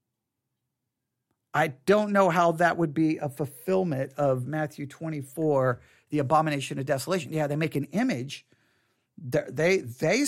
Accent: American